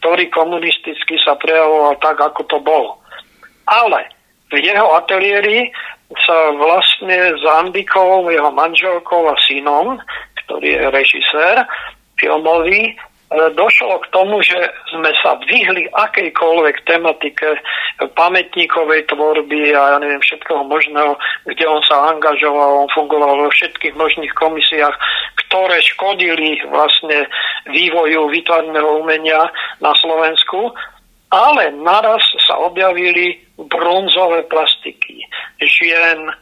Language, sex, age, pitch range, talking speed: Slovak, male, 50-69, 150-180 Hz, 105 wpm